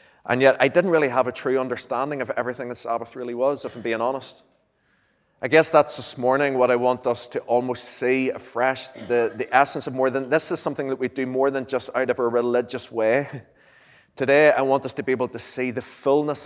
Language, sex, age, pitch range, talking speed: English, male, 30-49, 115-135 Hz, 230 wpm